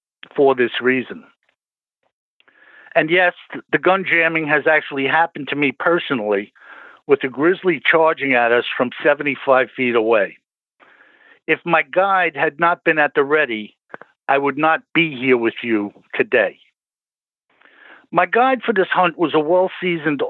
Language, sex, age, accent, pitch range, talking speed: English, male, 60-79, American, 135-175 Hz, 145 wpm